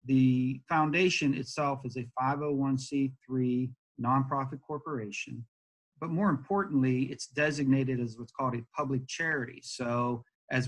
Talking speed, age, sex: 120 wpm, 40-59, male